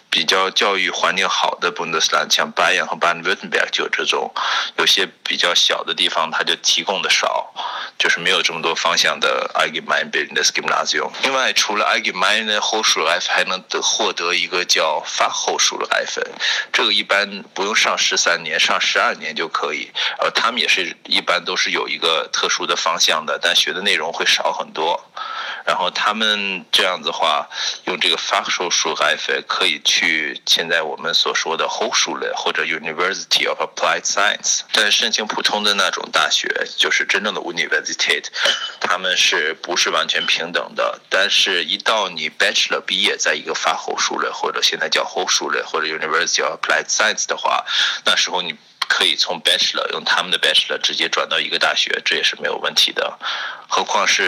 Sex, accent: male, native